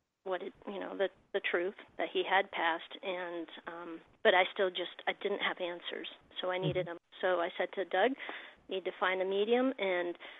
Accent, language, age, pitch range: American, English, 40-59, 185-230 Hz